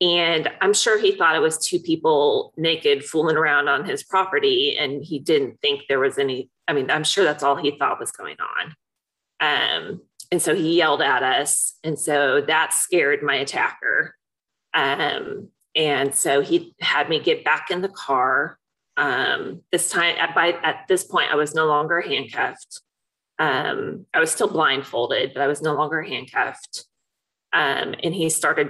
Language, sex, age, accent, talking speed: English, female, 30-49, American, 180 wpm